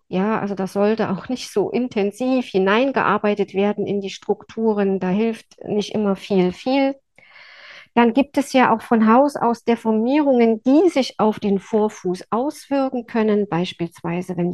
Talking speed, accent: 155 wpm, German